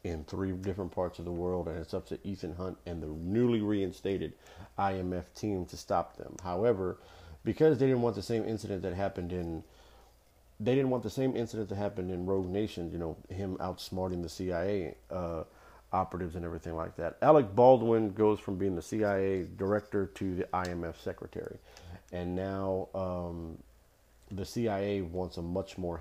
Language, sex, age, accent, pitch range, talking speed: English, male, 50-69, American, 85-105 Hz, 180 wpm